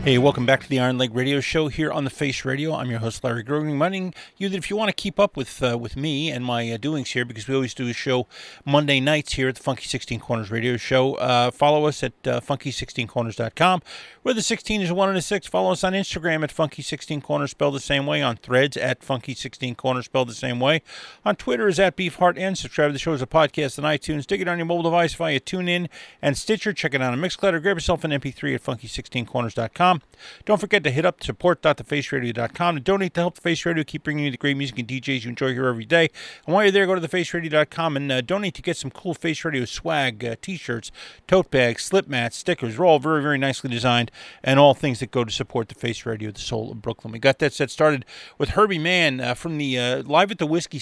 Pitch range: 125-165 Hz